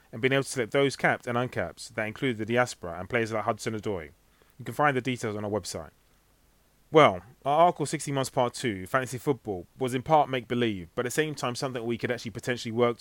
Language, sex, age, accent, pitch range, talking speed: English, male, 30-49, British, 105-135 Hz, 230 wpm